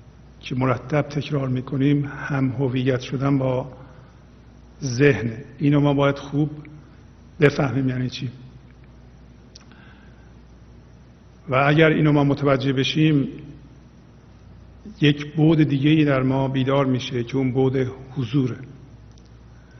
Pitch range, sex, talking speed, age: 130-145 Hz, male, 95 wpm, 50-69